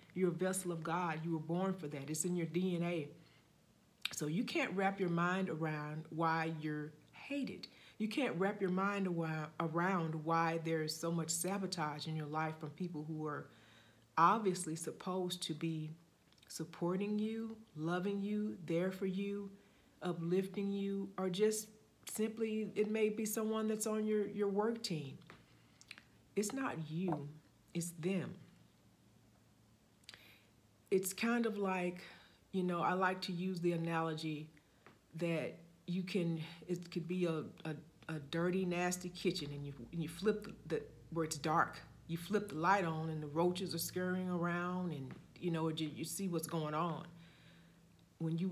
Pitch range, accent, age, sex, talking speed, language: 155-190 Hz, American, 40-59, female, 160 wpm, English